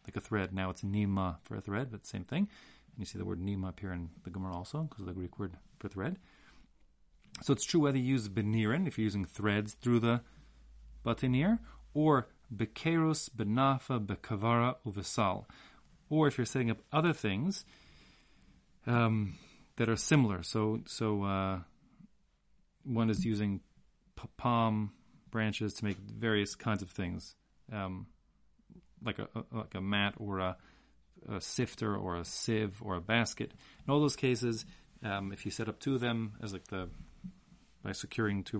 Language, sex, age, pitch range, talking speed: English, male, 30-49, 100-125 Hz, 170 wpm